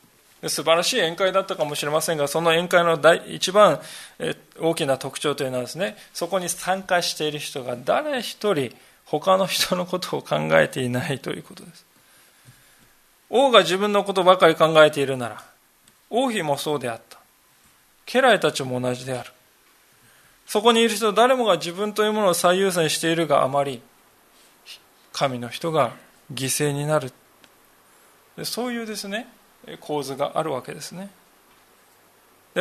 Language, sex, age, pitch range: Japanese, male, 20-39, 140-200 Hz